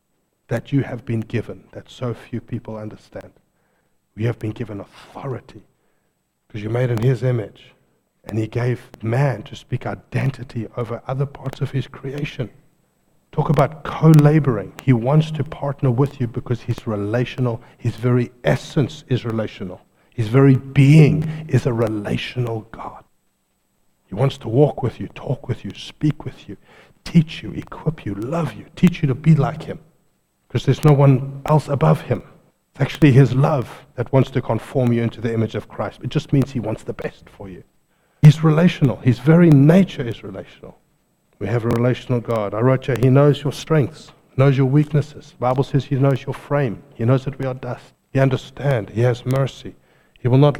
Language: English